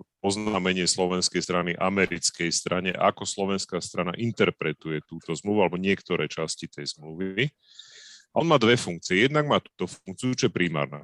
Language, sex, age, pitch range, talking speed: Slovak, male, 30-49, 85-115 Hz, 140 wpm